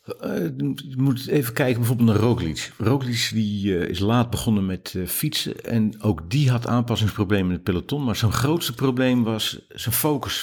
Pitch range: 105-130 Hz